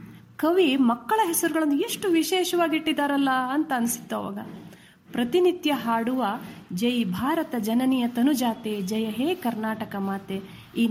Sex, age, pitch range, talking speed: female, 30-49, 225-285 Hz, 105 wpm